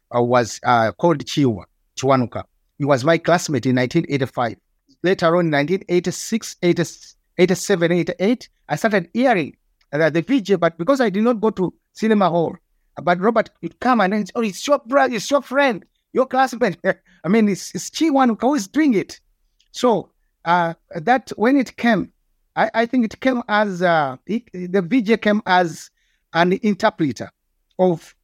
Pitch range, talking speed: 155-215 Hz, 170 wpm